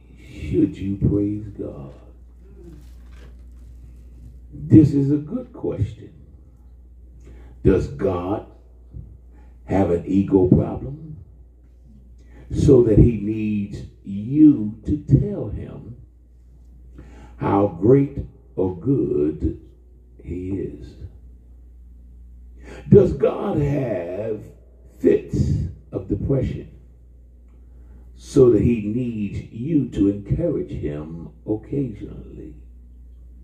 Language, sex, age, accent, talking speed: English, male, 50-69, American, 80 wpm